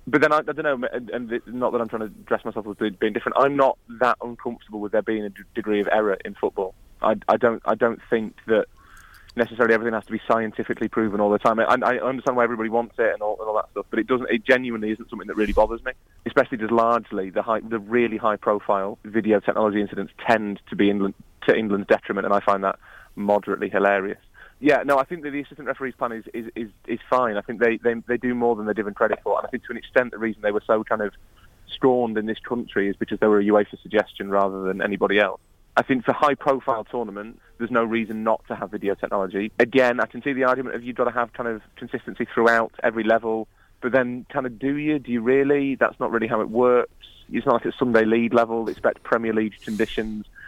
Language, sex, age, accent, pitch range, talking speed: English, male, 30-49, British, 105-120 Hz, 245 wpm